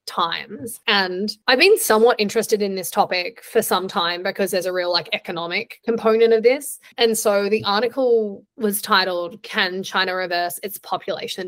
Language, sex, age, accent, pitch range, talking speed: English, female, 10-29, Australian, 190-230 Hz, 165 wpm